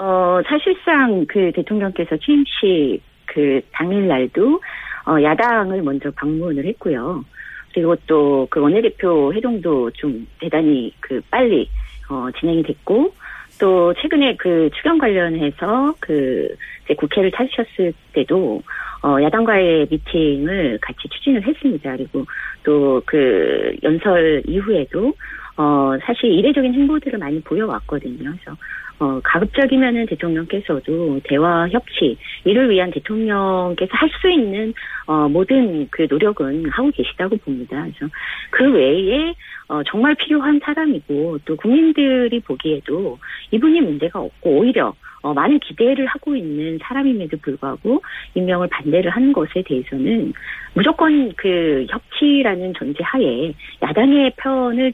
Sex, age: female, 40-59